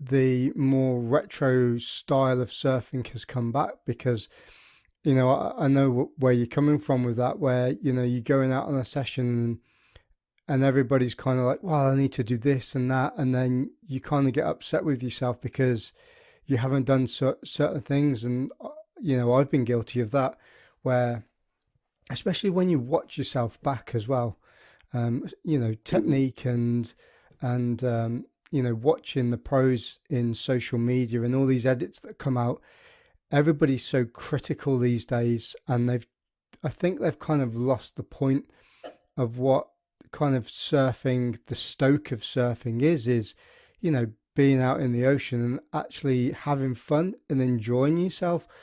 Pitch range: 120-145 Hz